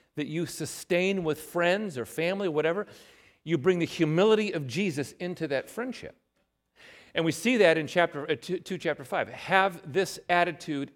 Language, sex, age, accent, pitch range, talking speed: English, male, 40-59, American, 115-170 Hz, 175 wpm